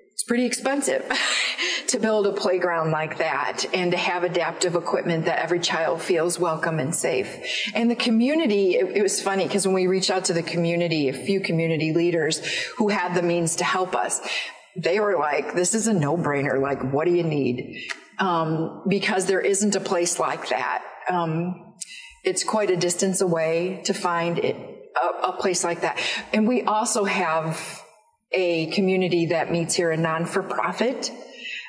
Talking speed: 170 wpm